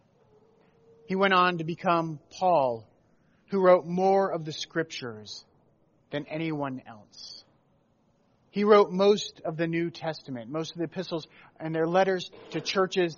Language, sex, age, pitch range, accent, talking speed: English, male, 30-49, 150-195 Hz, American, 140 wpm